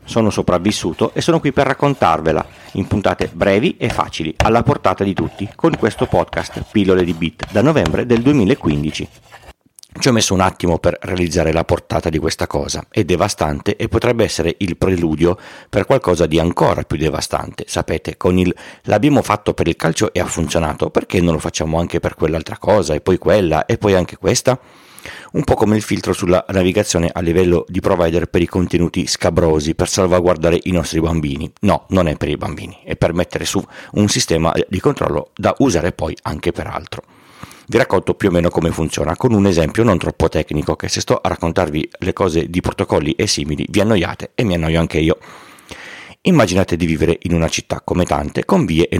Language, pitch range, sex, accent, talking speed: Italian, 80-100 Hz, male, native, 195 wpm